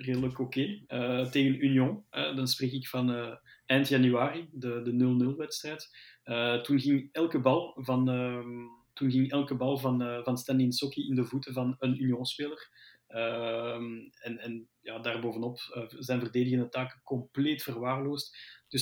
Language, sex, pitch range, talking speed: Dutch, male, 125-140 Hz, 150 wpm